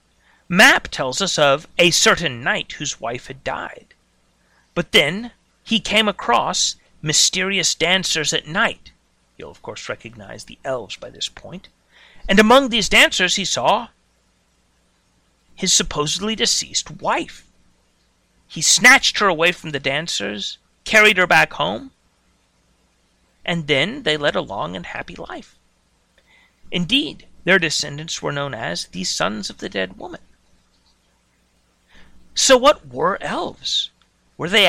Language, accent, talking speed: English, American, 135 wpm